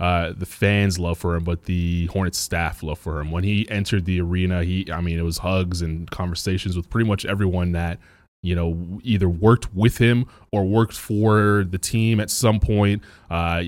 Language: English